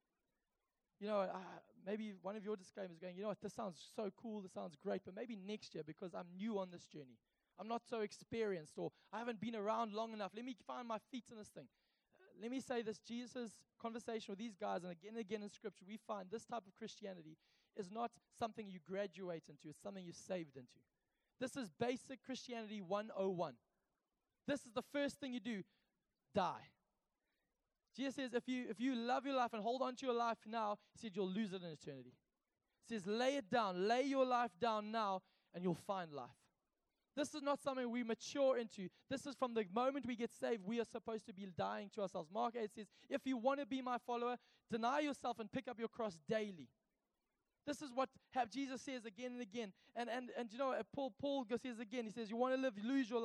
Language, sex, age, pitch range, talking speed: English, male, 20-39, 195-250 Hz, 225 wpm